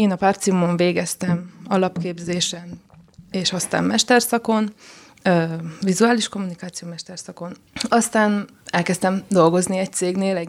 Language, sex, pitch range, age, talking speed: Hungarian, female, 170-205 Hz, 20-39, 105 wpm